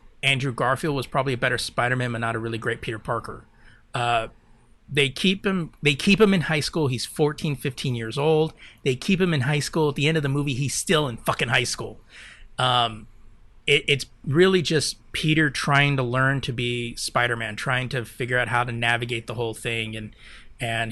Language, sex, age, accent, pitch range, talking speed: English, male, 30-49, American, 115-135 Hz, 200 wpm